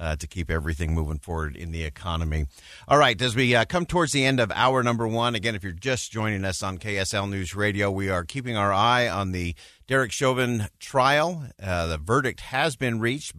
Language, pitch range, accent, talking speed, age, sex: English, 90-120 Hz, American, 215 wpm, 50-69, male